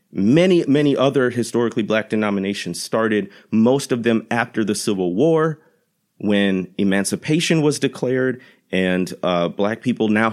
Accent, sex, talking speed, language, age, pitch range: American, male, 135 wpm, English, 30-49, 105-145 Hz